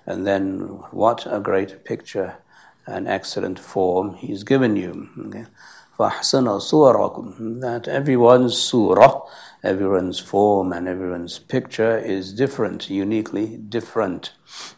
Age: 60-79